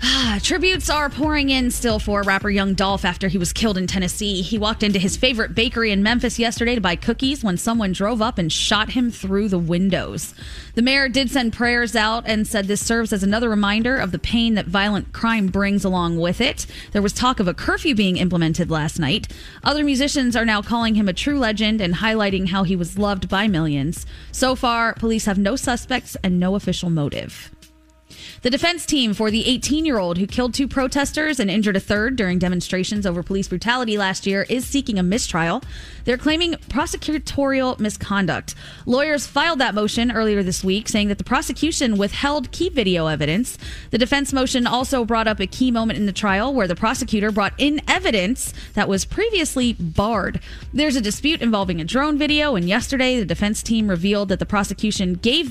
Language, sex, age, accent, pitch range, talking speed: English, female, 20-39, American, 195-255 Hz, 200 wpm